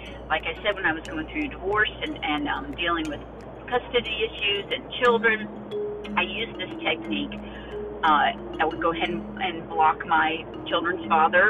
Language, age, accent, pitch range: English, 40-59, American, 155-245 Hz